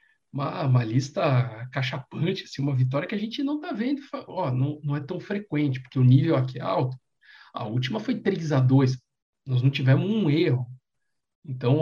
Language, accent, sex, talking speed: Portuguese, Brazilian, male, 180 wpm